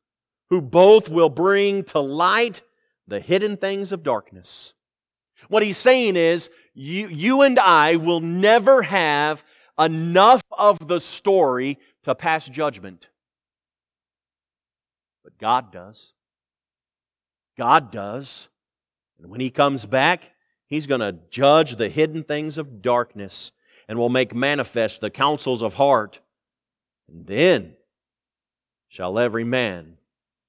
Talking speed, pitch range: 120 wpm, 120-190 Hz